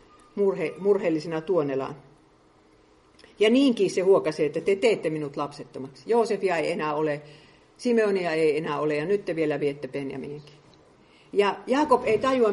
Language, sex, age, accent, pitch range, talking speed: Finnish, female, 50-69, native, 150-225 Hz, 145 wpm